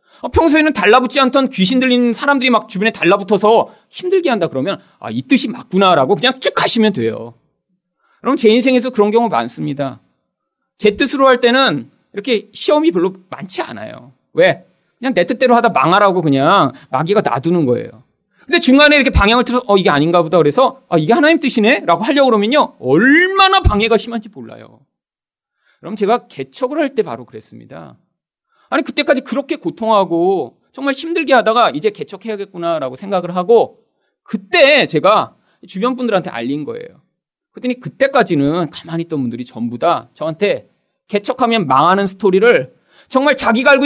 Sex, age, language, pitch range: male, 40-59, Korean, 180-275 Hz